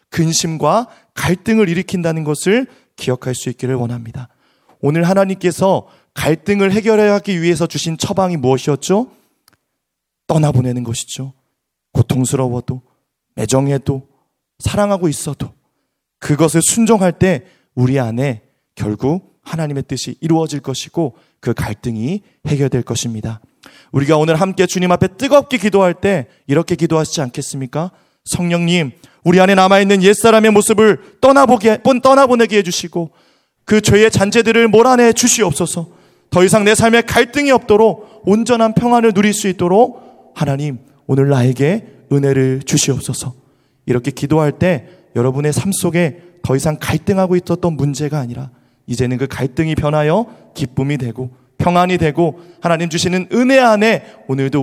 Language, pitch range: Korean, 135-200 Hz